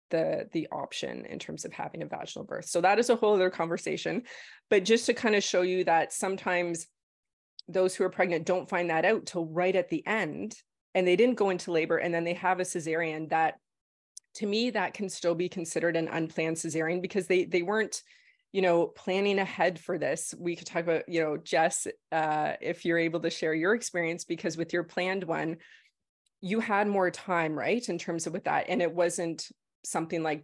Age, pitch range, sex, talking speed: 20-39, 165-200 Hz, female, 210 wpm